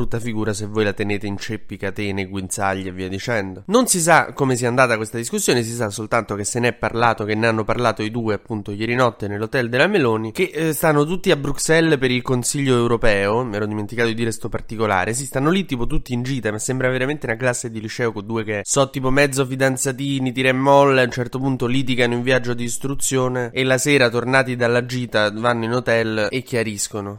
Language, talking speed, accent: Italian, 225 wpm, native